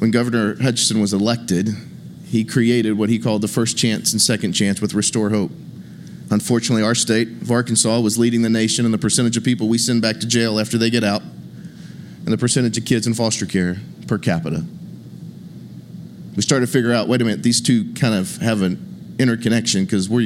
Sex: male